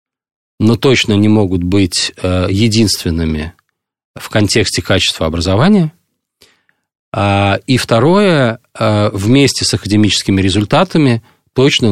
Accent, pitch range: native, 95-125 Hz